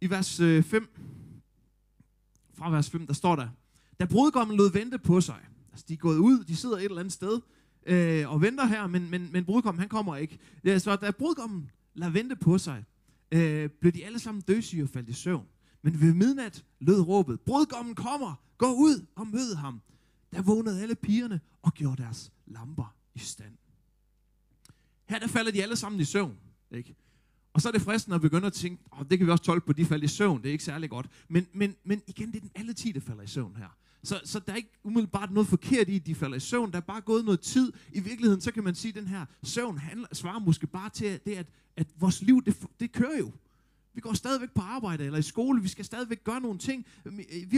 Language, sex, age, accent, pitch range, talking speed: Danish, male, 30-49, native, 155-220 Hz, 235 wpm